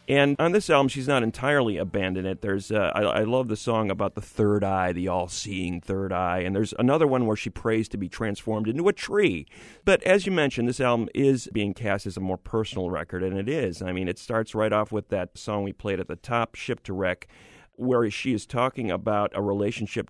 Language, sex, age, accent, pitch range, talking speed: English, male, 40-59, American, 95-120 Hz, 235 wpm